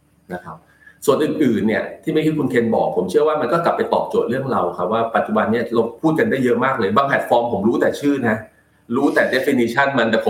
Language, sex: Thai, male